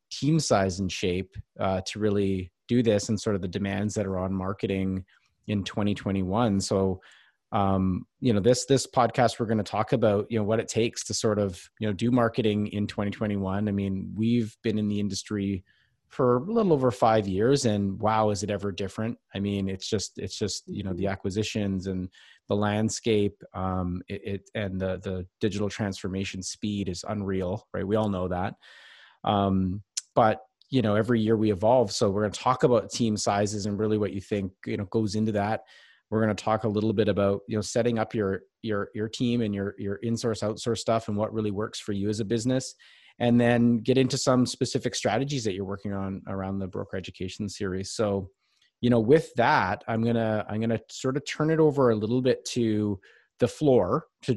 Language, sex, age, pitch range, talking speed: English, male, 30-49, 100-115 Hz, 210 wpm